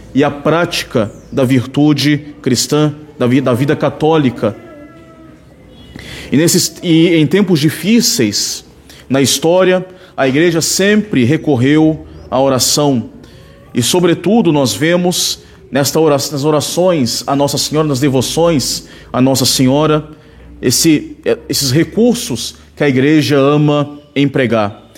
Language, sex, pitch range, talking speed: Portuguese, male, 130-165 Hz, 120 wpm